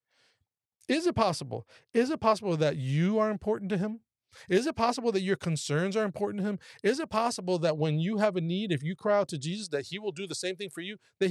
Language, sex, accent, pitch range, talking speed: English, male, American, 140-195 Hz, 250 wpm